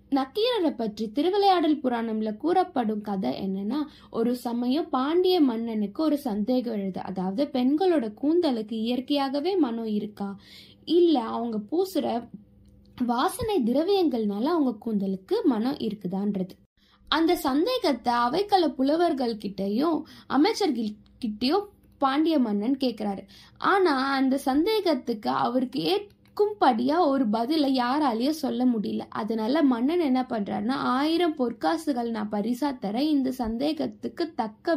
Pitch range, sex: 215-295 Hz, female